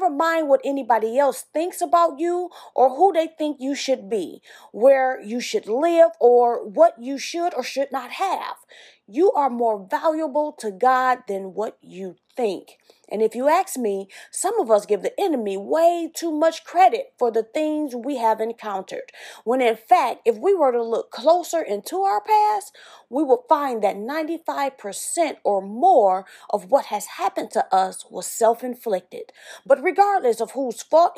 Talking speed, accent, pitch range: 175 wpm, American, 235-335 Hz